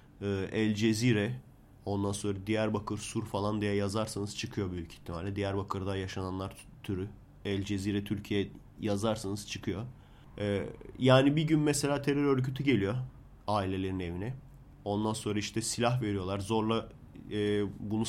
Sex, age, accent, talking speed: male, 30-49, native, 120 wpm